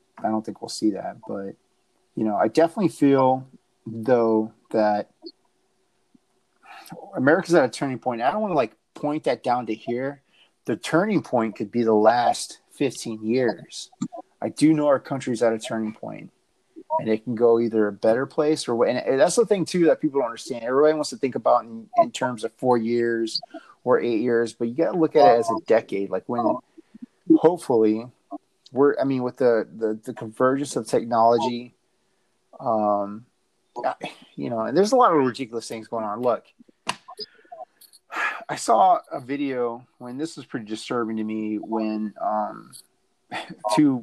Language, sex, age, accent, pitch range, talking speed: English, male, 30-49, American, 110-160 Hz, 175 wpm